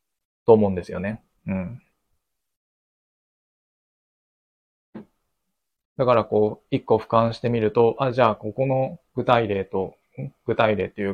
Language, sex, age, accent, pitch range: Japanese, male, 20-39, native, 95-115 Hz